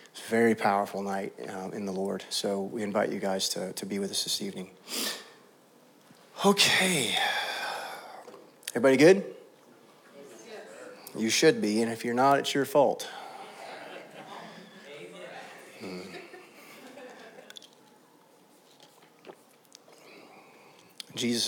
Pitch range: 100-135 Hz